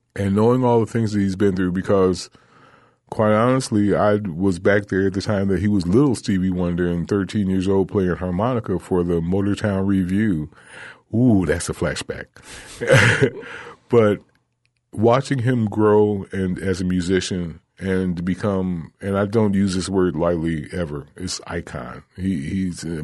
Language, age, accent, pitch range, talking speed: English, 30-49, American, 90-105 Hz, 160 wpm